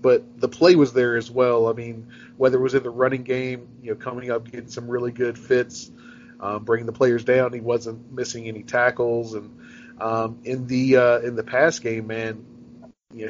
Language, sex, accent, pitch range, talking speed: English, male, American, 115-130 Hz, 210 wpm